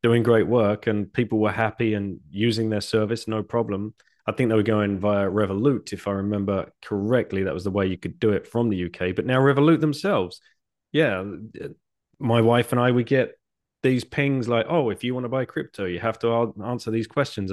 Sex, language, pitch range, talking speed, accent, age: male, English, 100-130 Hz, 210 wpm, British, 30-49